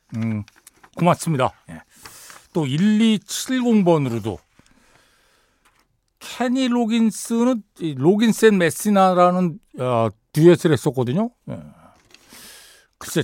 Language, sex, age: Korean, male, 60-79